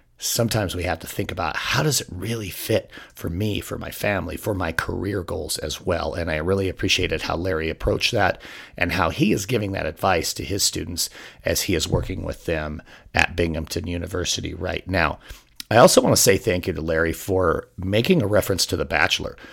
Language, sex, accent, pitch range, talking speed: English, male, American, 80-100 Hz, 205 wpm